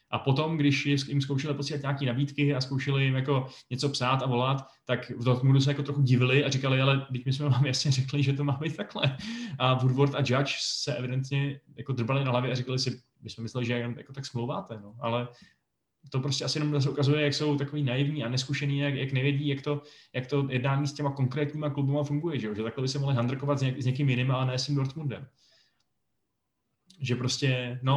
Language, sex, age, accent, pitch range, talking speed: Czech, male, 20-39, native, 120-140 Hz, 225 wpm